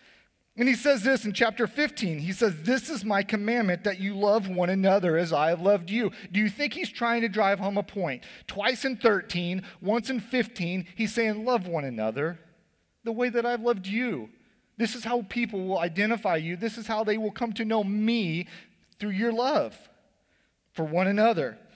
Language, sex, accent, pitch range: English, male, American, 165-220 Hz